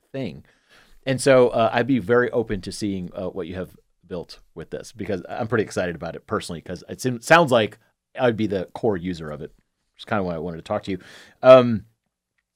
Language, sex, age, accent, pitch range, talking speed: English, male, 30-49, American, 90-120 Hz, 220 wpm